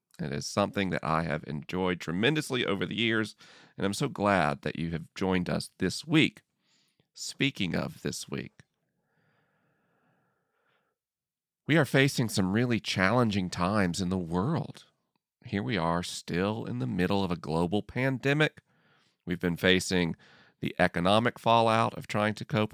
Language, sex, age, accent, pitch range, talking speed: English, male, 40-59, American, 90-120 Hz, 150 wpm